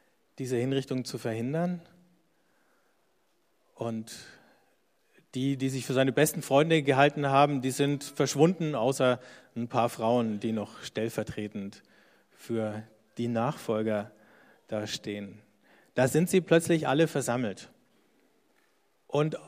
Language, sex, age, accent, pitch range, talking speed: German, male, 40-59, German, 115-150 Hz, 110 wpm